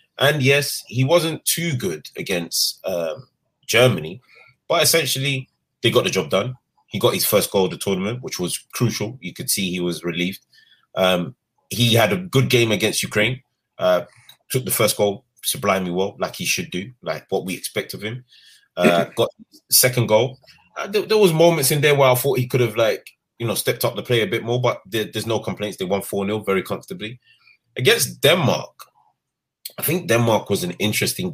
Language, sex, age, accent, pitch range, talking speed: English, male, 20-39, British, 100-135 Hz, 195 wpm